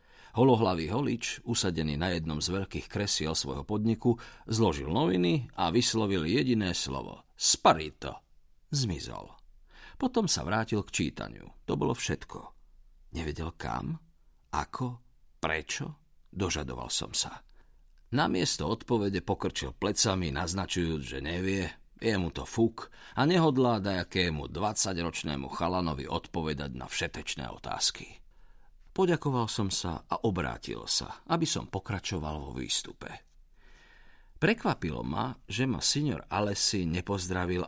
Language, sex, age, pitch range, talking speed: Slovak, male, 50-69, 80-120 Hz, 115 wpm